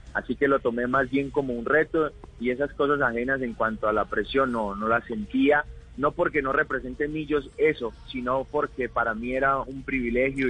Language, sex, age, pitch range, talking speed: Spanish, male, 30-49, 115-140 Hz, 200 wpm